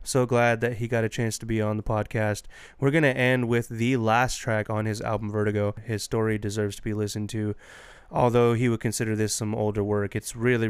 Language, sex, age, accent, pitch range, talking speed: English, male, 20-39, American, 110-130 Hz, 230 wpm